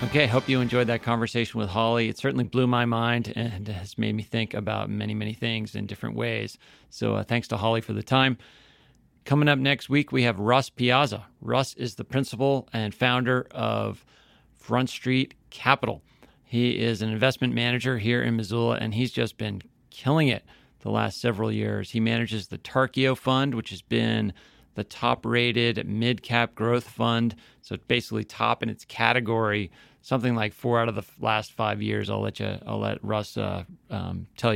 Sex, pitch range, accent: male, 105-125 Hz, American